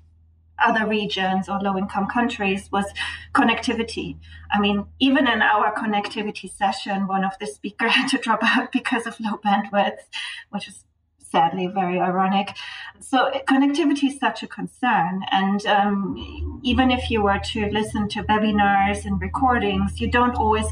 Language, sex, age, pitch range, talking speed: English, female, 30-49, 195-245 Hz, 150 wpm